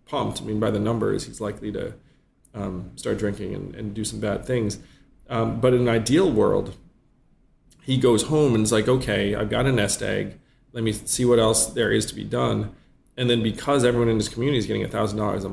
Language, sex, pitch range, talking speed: English, male, 105-115 Hz, 215 wpm